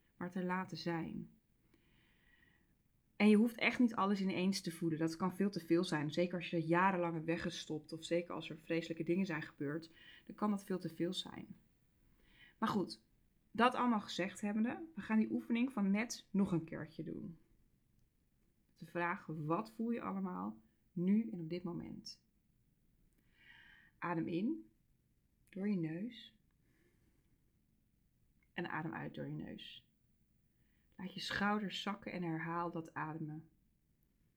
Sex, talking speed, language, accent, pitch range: female, 150 wpm, Dutch, Dutch, 165-195 Hz